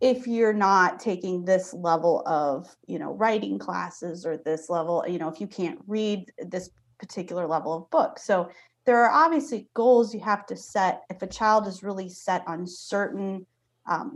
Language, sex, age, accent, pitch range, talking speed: English, female, 30-49, American, 180-225 Hz, 180 wpm